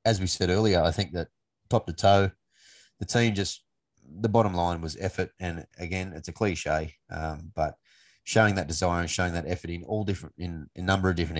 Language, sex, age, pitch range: English, male, 20-39, 80-95 Hz